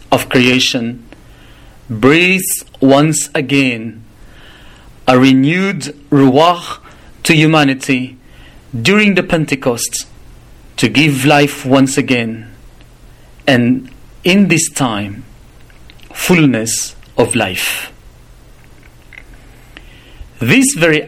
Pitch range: 125-155 Hz